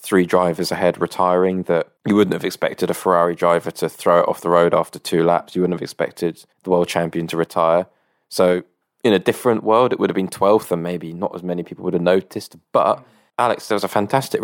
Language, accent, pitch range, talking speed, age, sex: English, British, 85-100 Hz, 230 wpm, 20-39, male